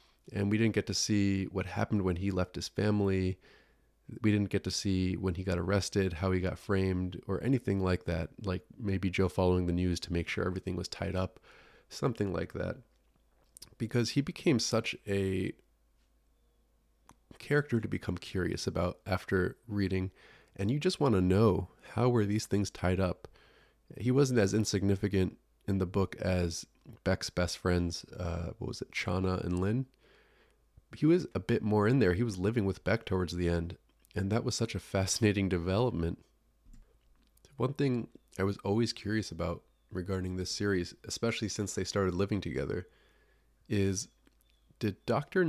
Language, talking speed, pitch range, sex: English, 170 wpm, 90-110 Hz, male